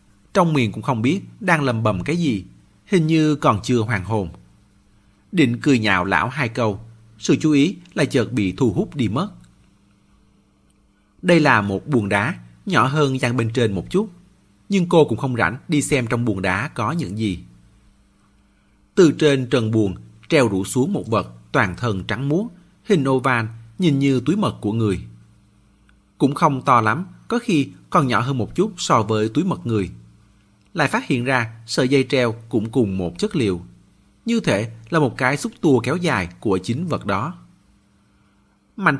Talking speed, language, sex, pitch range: 185 wpm, Vietnamese, male, 100-145 Hz